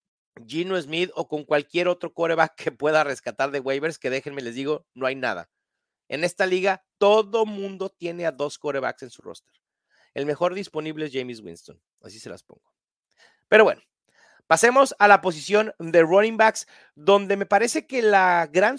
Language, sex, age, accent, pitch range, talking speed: English, male, 40-59, Mexican, 160-210 Hz, 180 wpm